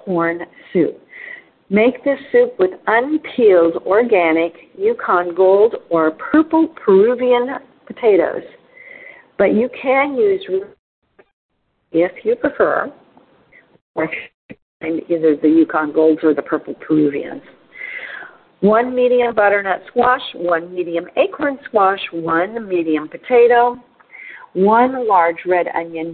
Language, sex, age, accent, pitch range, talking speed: English, female, 50-69, American, 170-255 Hz, 100 wpm